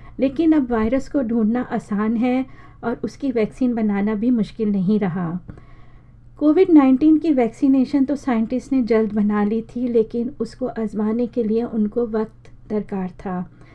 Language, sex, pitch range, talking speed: Hindi, female, 215-260 Hz, 155 wpm